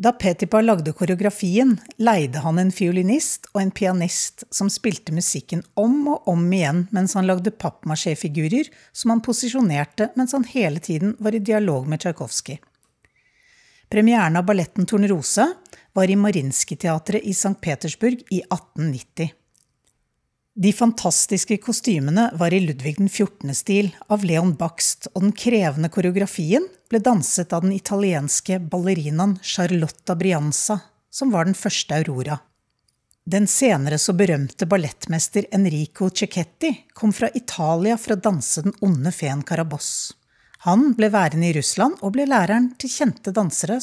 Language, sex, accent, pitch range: English, female, Swedish, 165-225 Hz